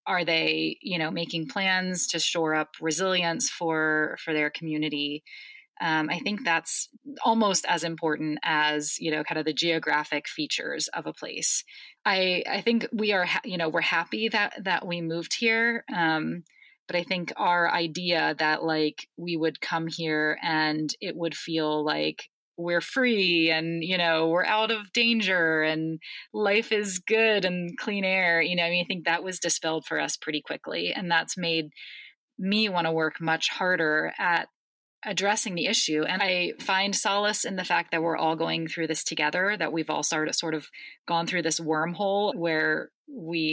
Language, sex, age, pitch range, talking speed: English, female, 30-49, 160-190 Hz, 180 wpm